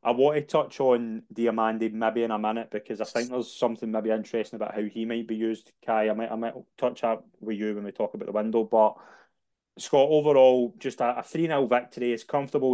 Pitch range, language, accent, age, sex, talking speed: 110-125 Hz, English, British, 20-39, male, 225 wpm